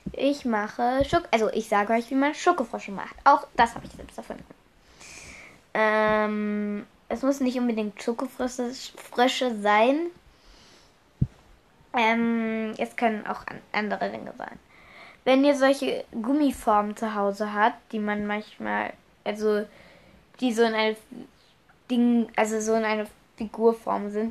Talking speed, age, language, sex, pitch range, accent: 130 wpm, 10-29, German, female, 215-260 Hz, German